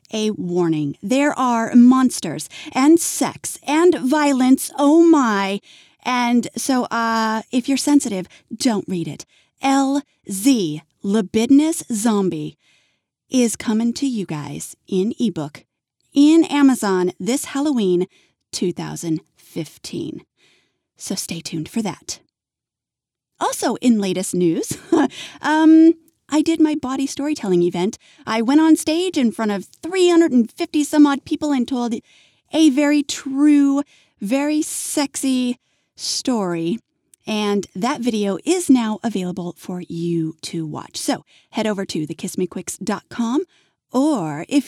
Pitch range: 190-290 Hz